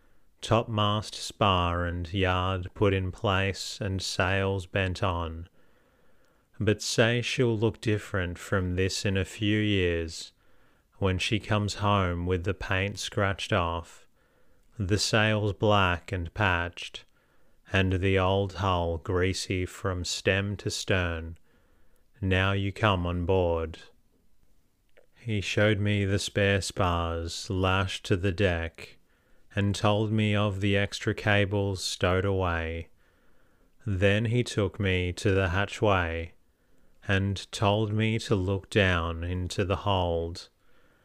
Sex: male